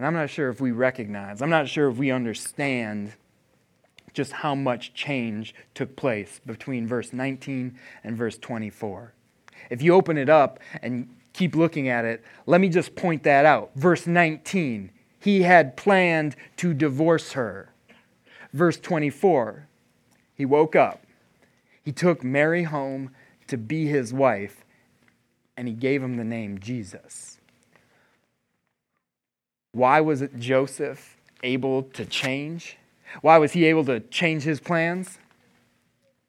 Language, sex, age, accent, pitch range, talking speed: English, male, 30-49, American, 120-160 Hz, 140 wpm